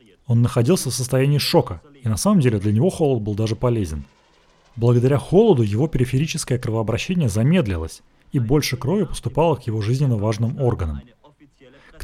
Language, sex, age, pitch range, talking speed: Russian, male, 30-49, 115-150 Hz, 155 wpm